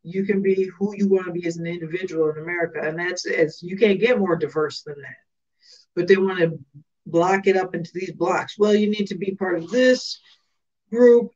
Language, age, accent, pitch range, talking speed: English, 50-69, American, 180-220 Hz, 220 wpm